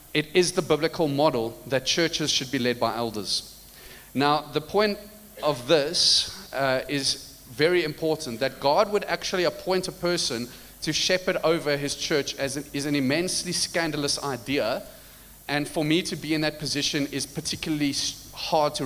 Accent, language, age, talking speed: South African, English, 30-49, 165 wpm